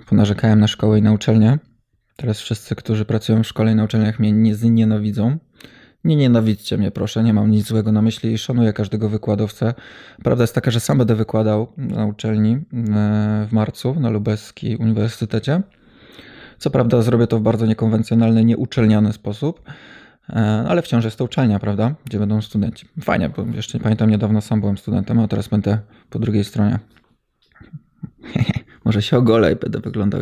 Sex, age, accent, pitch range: male, 20-39, native, 105-120 Hz